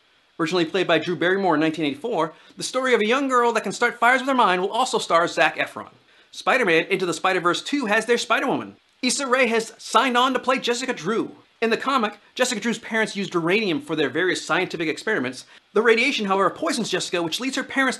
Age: 40-59